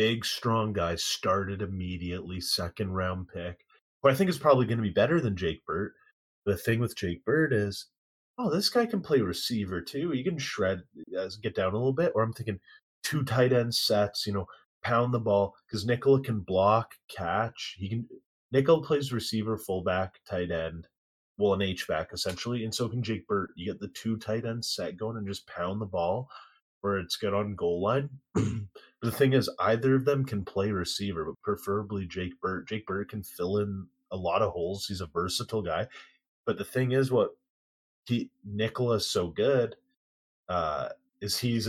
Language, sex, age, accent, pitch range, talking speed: English, male, 30-49, American, 95-120 Hz, 190 wpm